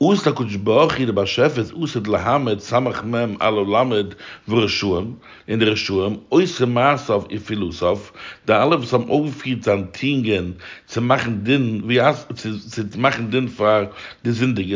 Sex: male